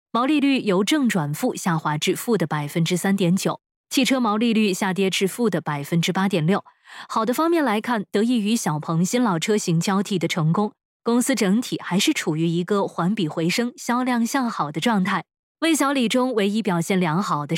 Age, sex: 20-39, female